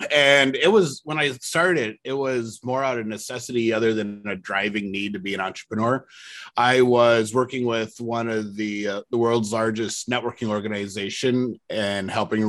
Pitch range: 105-130 Hz